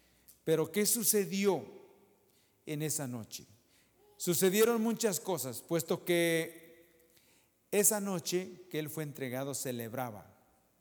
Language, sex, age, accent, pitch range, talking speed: English, male, 50-69, Mexican, 120-165 Hz, 100 wpm